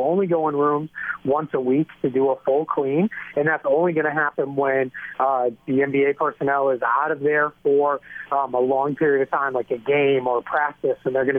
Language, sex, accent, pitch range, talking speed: English, male, American, 135-175 Hz, 225 wpm